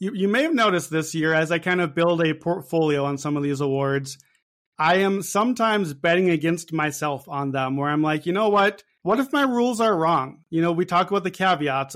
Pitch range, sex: 155-195 Hz, male